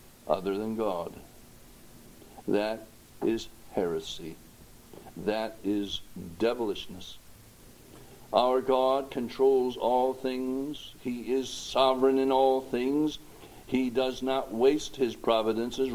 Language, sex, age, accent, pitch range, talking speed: English, male, 60-79, American, 105-135 Hz, 100 wpm